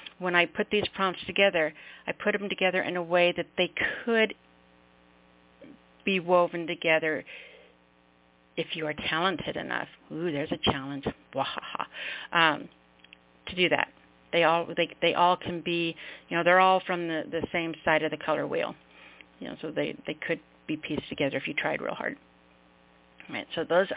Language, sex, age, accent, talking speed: English, female, 50-69, American, 175 wpm